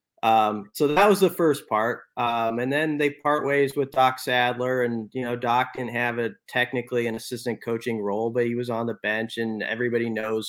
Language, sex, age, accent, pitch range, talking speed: English, male, 30-49, American, 110-125 Hz, 210 wpm